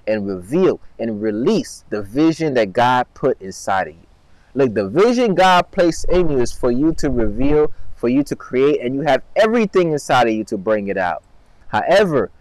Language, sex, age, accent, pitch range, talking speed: English, male, 20-39, American, 125-175 Hz, 195 wpm